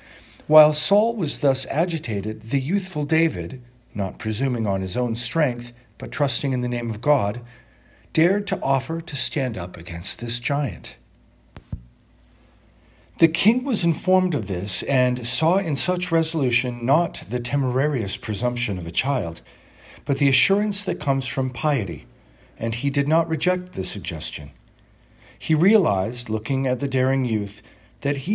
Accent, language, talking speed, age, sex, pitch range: American, English, 150 wpm, 50-69, male, 110-150 Hz